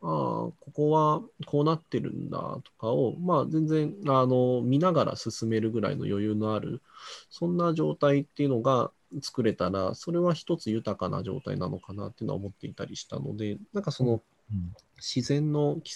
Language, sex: Japanese, male